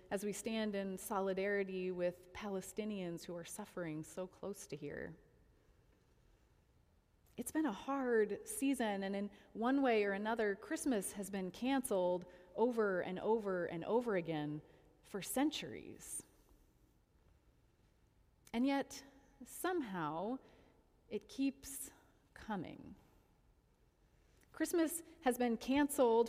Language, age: English, 30-49